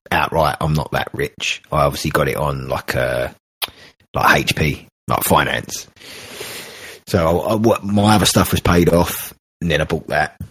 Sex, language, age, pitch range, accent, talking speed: male, English, 30-49, 90-120 Hz, British, 170 wpm